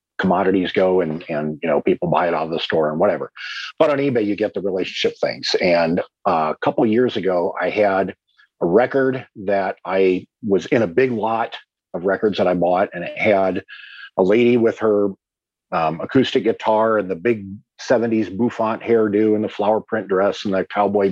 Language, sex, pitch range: English, male, 95-145 Hz